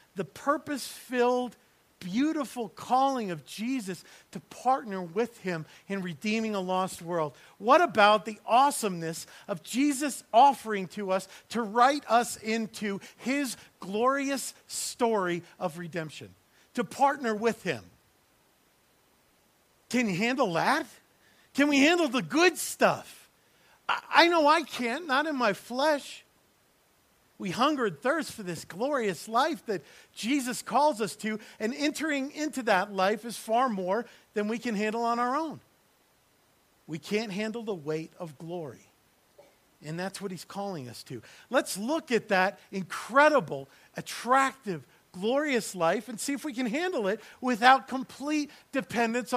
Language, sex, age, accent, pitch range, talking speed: English, male, 50-69, American, 190-275 Hz, 140 wpm